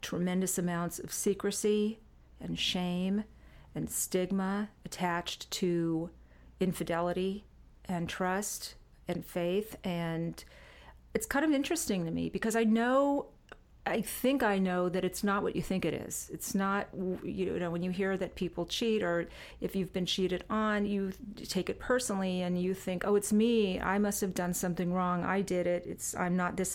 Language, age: English, 40-59